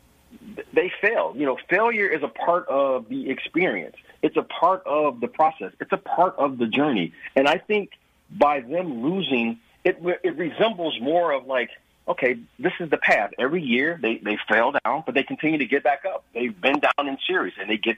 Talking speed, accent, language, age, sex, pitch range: 205 wpm, American, English, 40-59, male, 115-175 Hz